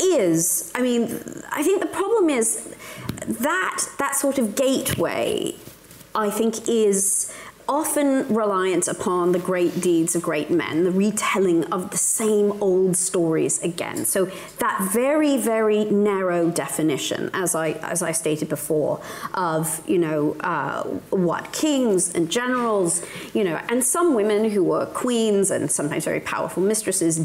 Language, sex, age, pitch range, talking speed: English, female, 30-49, 185-275 Hz, 145 wpm